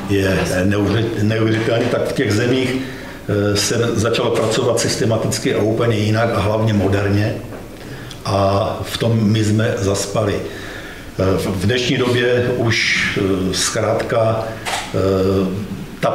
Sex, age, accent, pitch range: male, 50-69, native, 100-115 Hz